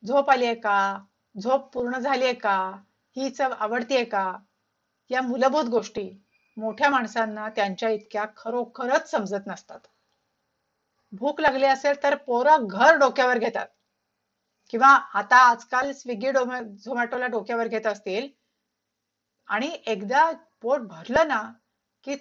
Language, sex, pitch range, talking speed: Marathi, female, 215-270 Hz, 115 wpm